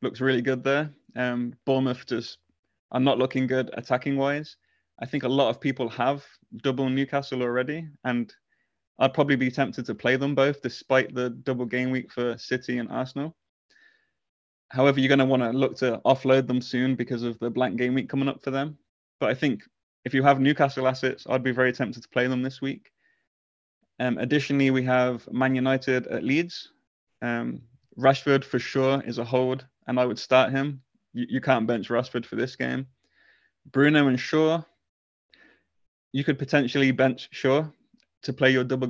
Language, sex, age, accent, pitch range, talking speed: English, male, 20-39, British, 125-140 Hz, 180 wpm